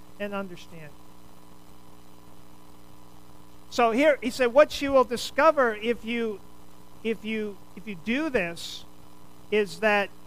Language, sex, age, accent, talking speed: English, male, 50-69, American, 115 wpm